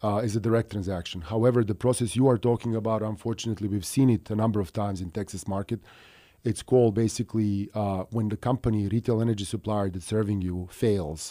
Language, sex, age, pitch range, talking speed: English, male, 40-59, 95-115 Hz, 195 wpm